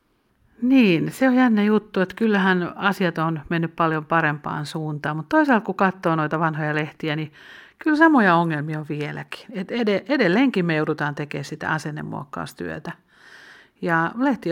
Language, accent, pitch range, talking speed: Finnish, native, 150-195 Hz, 145 wpm